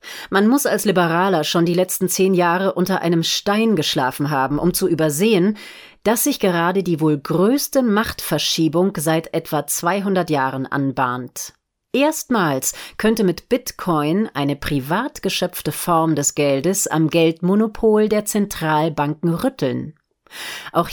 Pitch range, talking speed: 155-205 Hz, 130 wpm